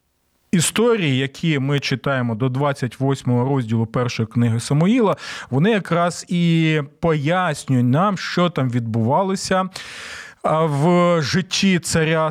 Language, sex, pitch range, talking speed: Ukrainian, male, 130-175 Hz, 100 wpm